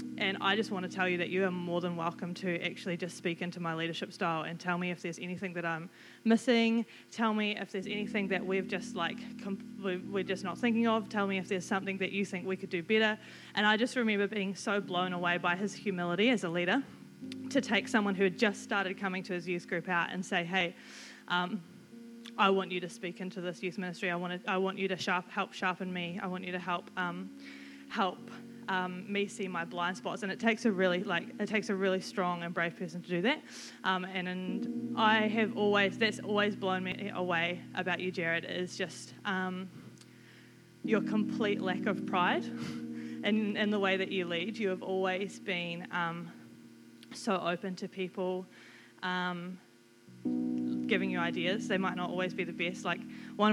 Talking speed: 210 wpm